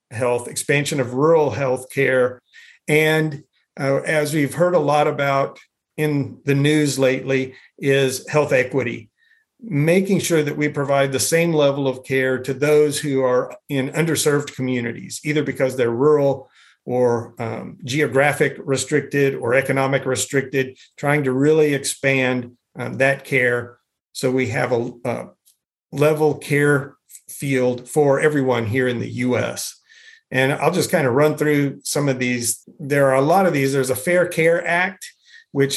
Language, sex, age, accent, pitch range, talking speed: English, male, 50-69, American, 130-155 Hz, 155 wpm